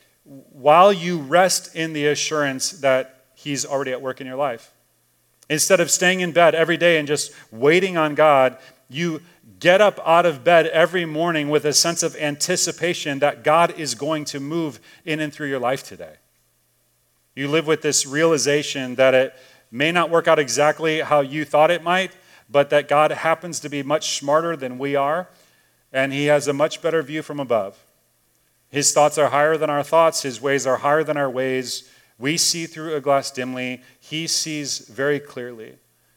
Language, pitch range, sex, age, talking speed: English, 130-155 Hz, male, 40-59, 185 wpm